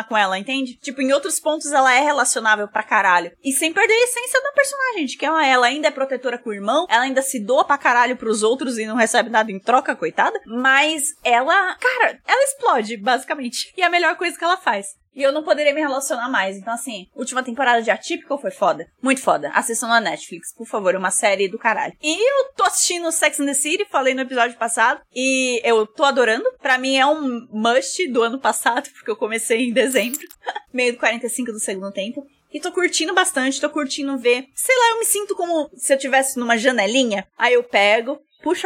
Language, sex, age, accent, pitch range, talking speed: Portuguese, female, 20-39, Brazilian, 235-315 Hz, 215 wpm